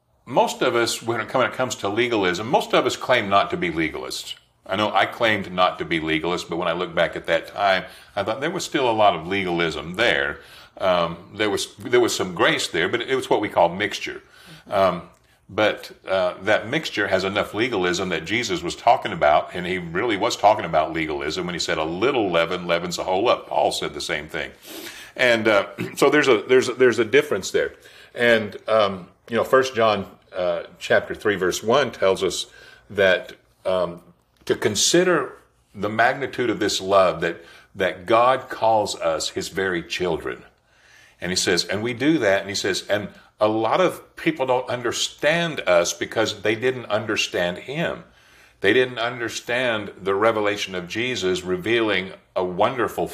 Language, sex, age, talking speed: English, male, 50-69, 185 wpm